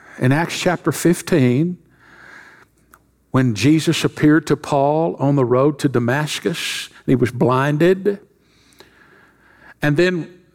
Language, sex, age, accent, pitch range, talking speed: English, male, 60-79, American, 135-175 Hz, 110 wpm